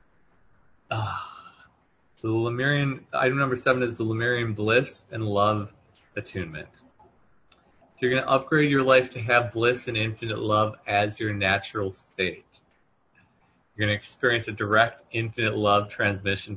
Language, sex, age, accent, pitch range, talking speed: English, male, 30-49, American, 100-115 Hz, 150 wpm